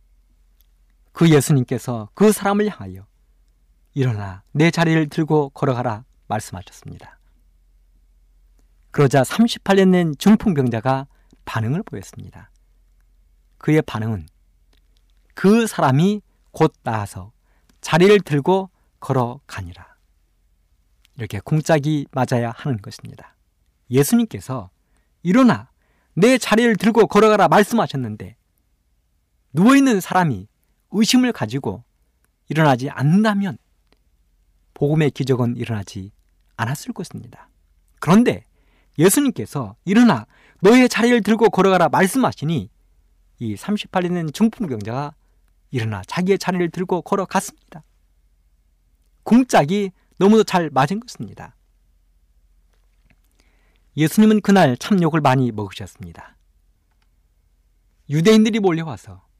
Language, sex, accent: Korean, male, native